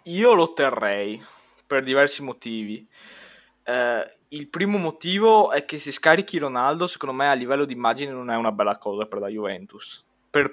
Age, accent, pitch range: 20-39, native, 120-150 Hz